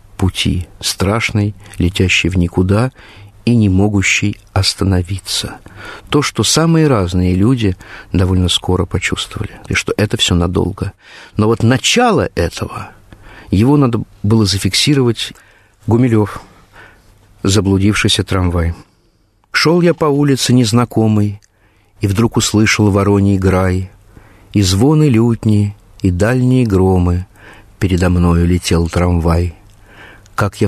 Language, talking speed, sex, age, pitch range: Russian, 110 wpm, male, 50-69, 95-120 Hz